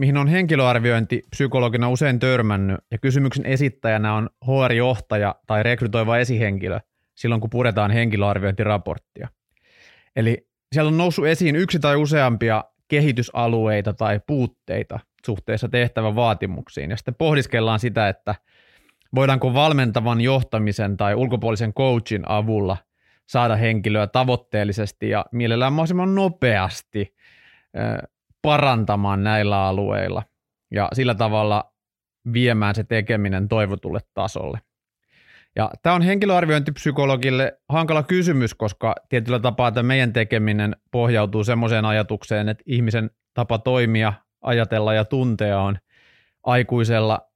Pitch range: 105-130 Hz